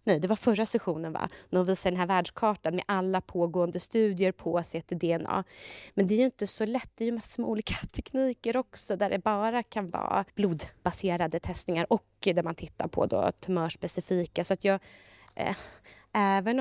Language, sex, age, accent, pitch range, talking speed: Swedish, female, 20-39, native, 175-205 Hz, 180 wpm